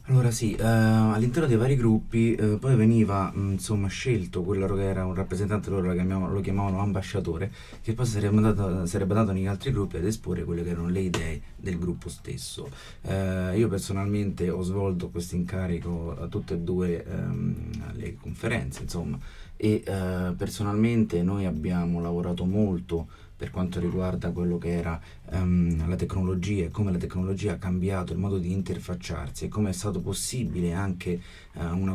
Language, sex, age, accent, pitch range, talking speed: Italian, male, 30-49, native, 85-100 Hz, 165 wpm